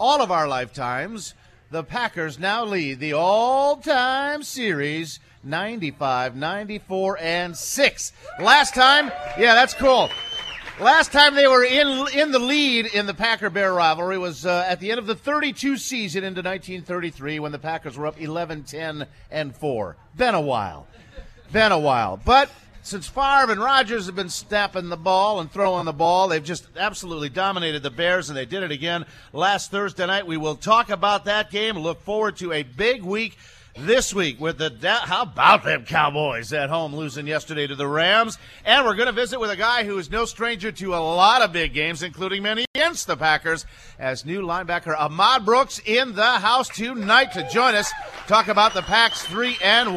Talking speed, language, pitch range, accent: 185 wpm, English, 160-225 Hz, American